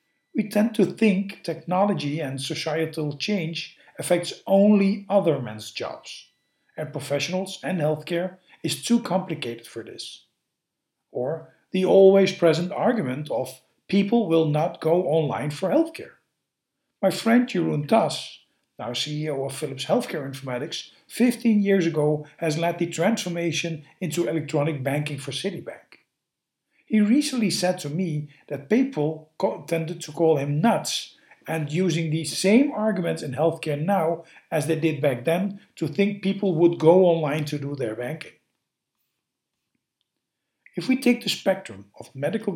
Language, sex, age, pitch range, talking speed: English, male, 50-69, 150-195 Hz, 140 wpm